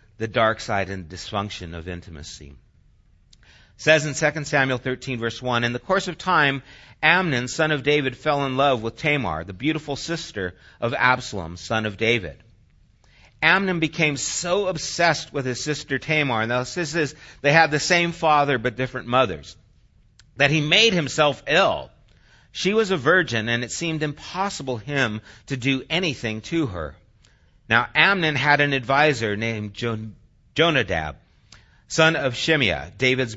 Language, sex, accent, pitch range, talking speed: English, male, American, 110-155 Hz, 155 wpm